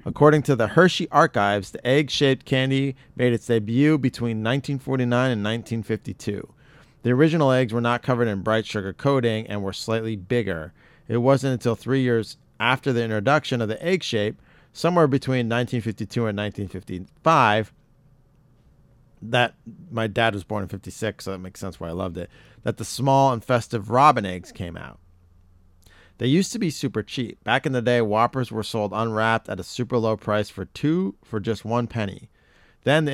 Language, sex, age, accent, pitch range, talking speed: English, male, 40-59, American, 100-130 Hz, 175 wpm